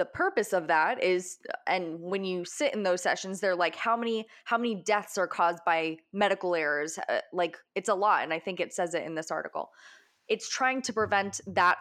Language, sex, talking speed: English, female, 220 wpm